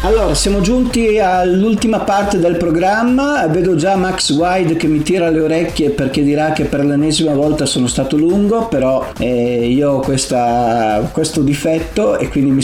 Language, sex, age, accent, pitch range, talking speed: Italian, male, 40-59, native, 125-165 Hz, 165 wpm